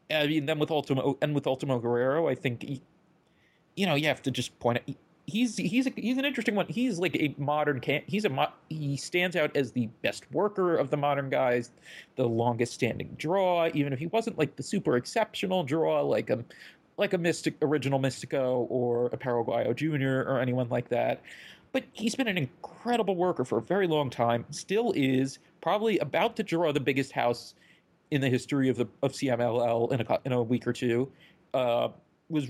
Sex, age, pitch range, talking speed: male, 30-49, 130-170 Hz, 205 wpm